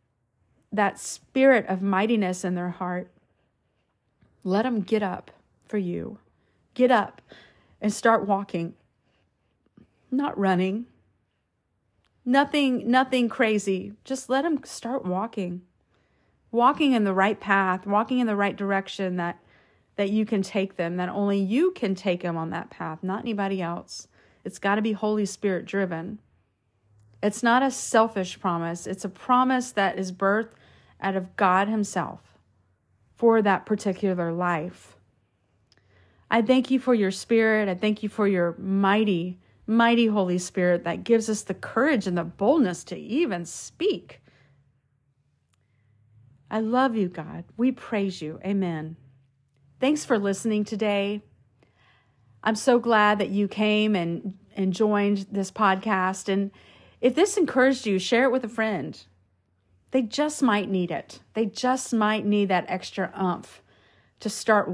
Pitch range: 170-220 Hz